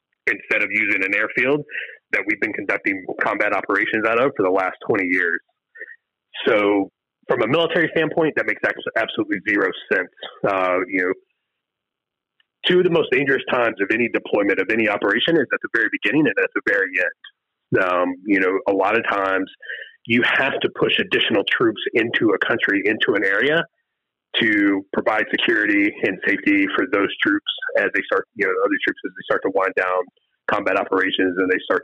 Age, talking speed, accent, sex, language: 30-49, 185 wpm, American, male, English